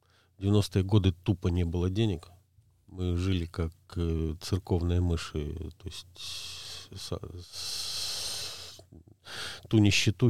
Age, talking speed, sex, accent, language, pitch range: 40-59, 85 wpm, male, native, Russian, 85-100 Hz